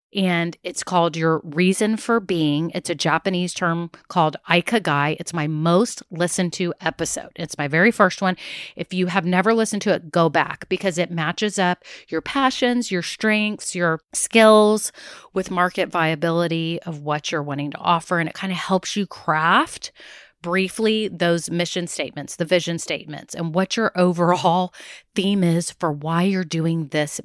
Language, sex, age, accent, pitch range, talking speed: English, female, 30-49, American, 165-195 Hz, 170 wpm